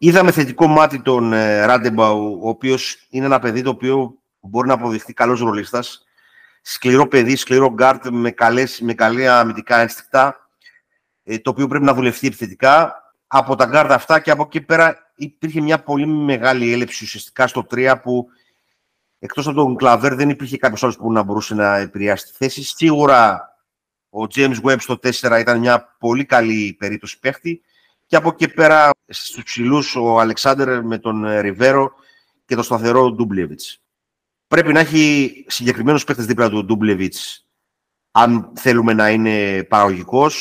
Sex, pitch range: male, 115-140 Hz